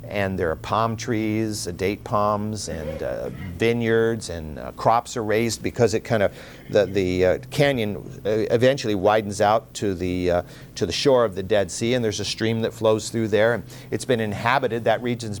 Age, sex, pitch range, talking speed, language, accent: 50-69, male, 105-140 Hz, 205 wpm, English, American